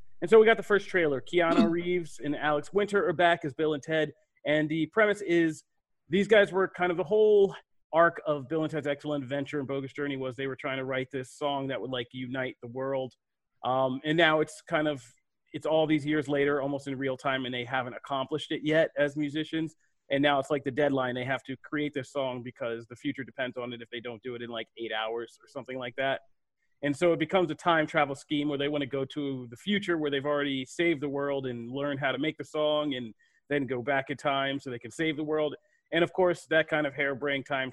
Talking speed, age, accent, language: 250 wpm, 30-49, American, English